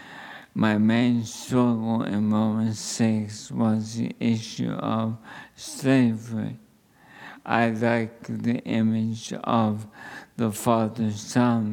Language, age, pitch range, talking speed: English, 50-69, 105-115 Hz, 90 wpm